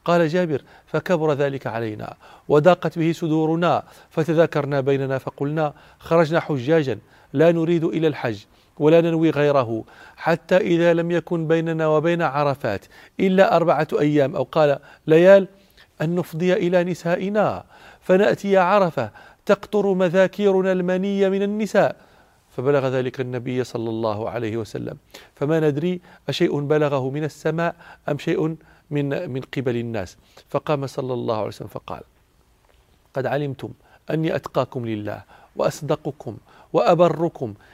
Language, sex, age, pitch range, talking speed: Arabic, male, 40-59, 140-180 Hz, 120 wpm